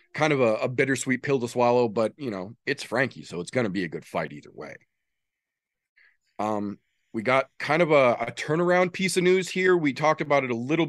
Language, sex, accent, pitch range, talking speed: English, male, American, 120-155 Hz, 225 wpm